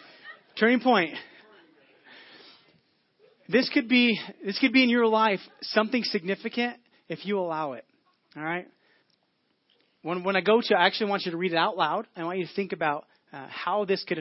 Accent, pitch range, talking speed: American, 155-195 Hz, 180 wpm